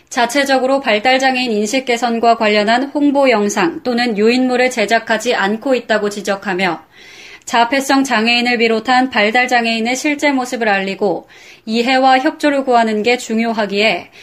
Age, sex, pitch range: 20-39, female, 225-265 Hz